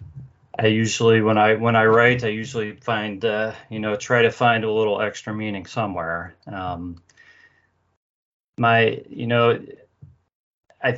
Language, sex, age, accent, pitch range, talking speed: English, male, 30-49, American, 100-115 Hz, 140 wpm